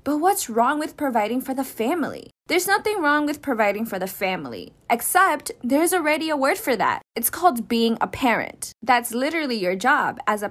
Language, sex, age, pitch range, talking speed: English, female, 20-39, 220-305 Hz, 195 wpm